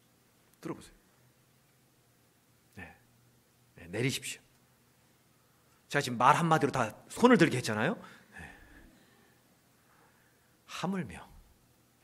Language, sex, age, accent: Korean, male, 40-59, native